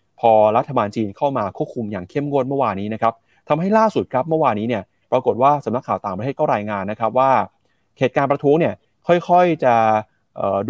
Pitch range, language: 110-145 Hz, Thai